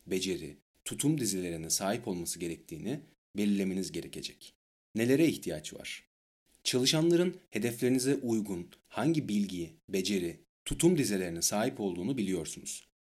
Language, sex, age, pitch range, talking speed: Turkish, male, 40-59, 90-115 Hz, 100 wpm